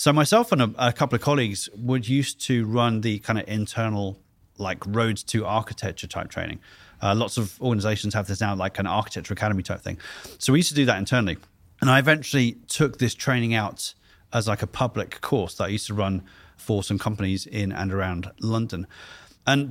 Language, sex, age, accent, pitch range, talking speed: Swedish, male, 30-49, British, 100-125 Hz, 205 wpm